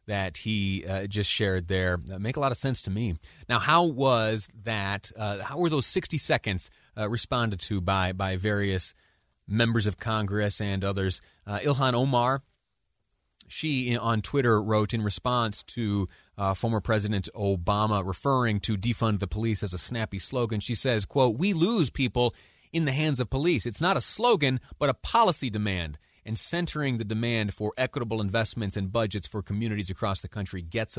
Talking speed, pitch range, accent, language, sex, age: 180 wpm, 100-125 Hz, American, English, male, 30-49